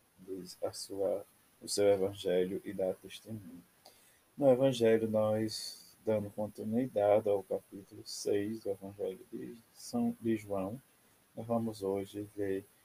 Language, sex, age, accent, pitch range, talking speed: Portuguese, male, 20-39, Brazilian, 95-115 Hz, 120 wpm